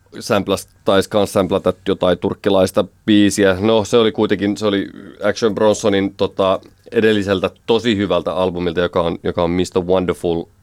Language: Finnish